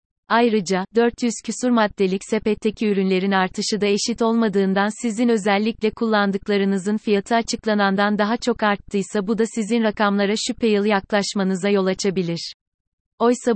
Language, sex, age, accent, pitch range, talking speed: Turkish, female, 30-49, native, 195-220 Hz, 125 wpm